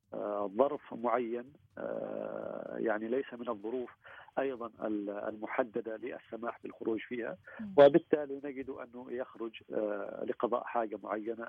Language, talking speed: Arabic, 95 wpm